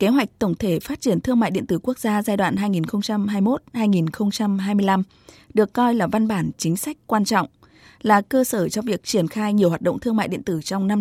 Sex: female